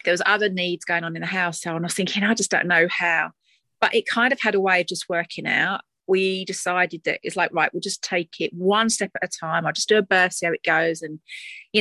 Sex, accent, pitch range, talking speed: female, British, 170-210 Hz, 280 wpm